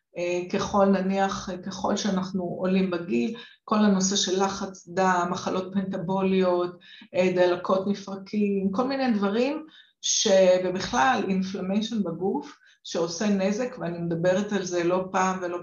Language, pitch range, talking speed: Hebrew, 175-210 Hz, 115 wpm